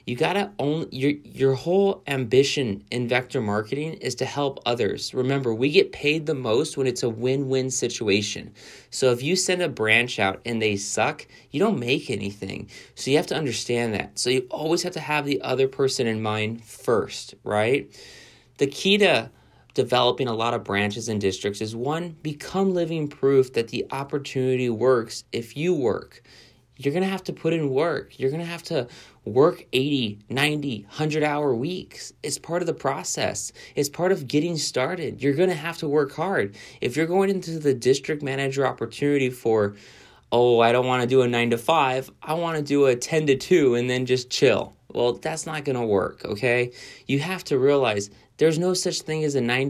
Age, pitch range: 30-49, 120-155 Hz